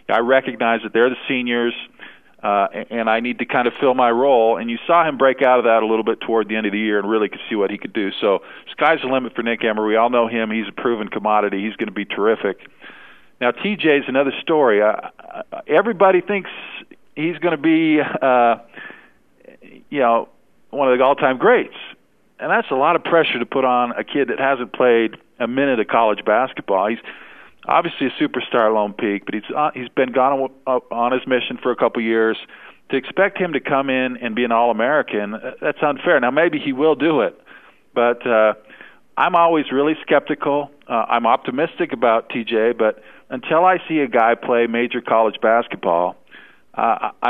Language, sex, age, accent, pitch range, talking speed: English, male, 50-69, American, 110-145 Hz, 205 wpm